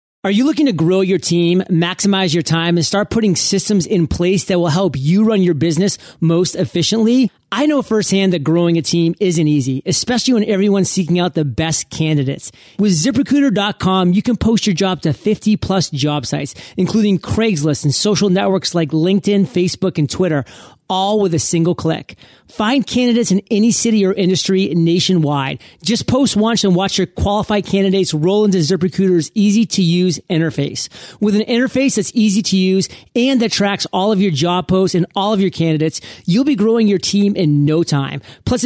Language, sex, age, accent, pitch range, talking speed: English, male, 40-59, American, 170-210 Hz, 185 wpm